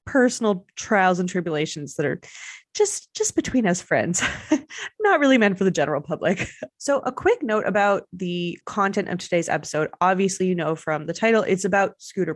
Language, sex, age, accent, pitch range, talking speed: English, female, 20-39, American, 170-215 Hz, 180 wpm